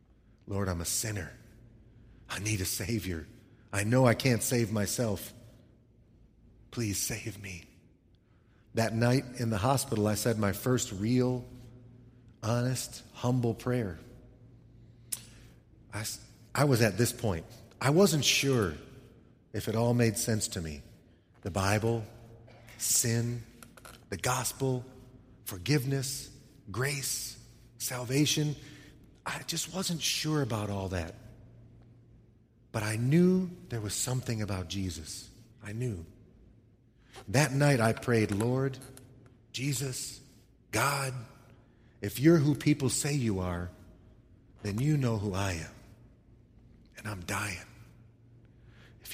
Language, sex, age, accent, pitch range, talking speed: English, male, 30-49, American, 105-125 Hz, 115 wpm